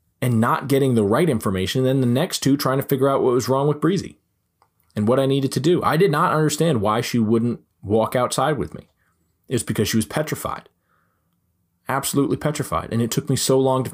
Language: English